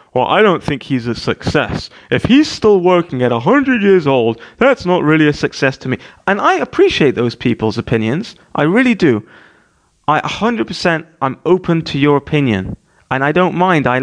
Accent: British